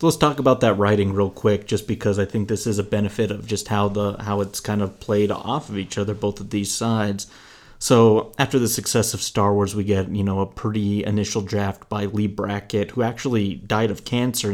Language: English